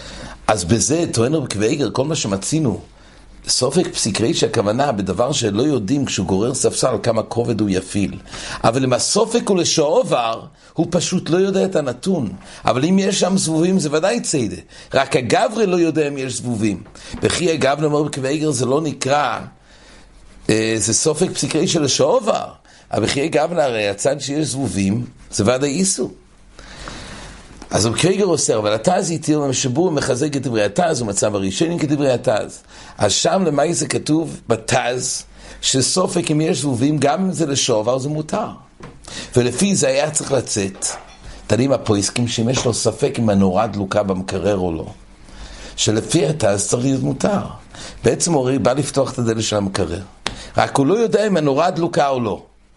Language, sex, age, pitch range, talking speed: English, male, 60-79, 110-160 Hz, 140 wpm